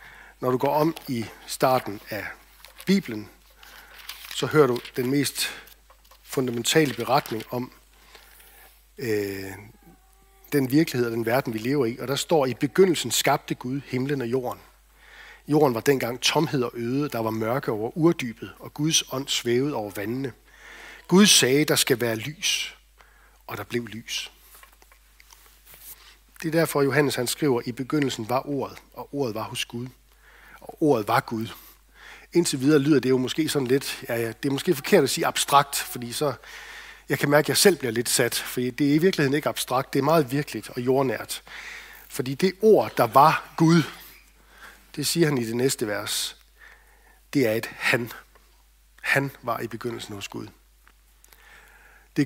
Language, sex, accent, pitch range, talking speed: Danish, male, native, 120-150 Hz, 170 wpm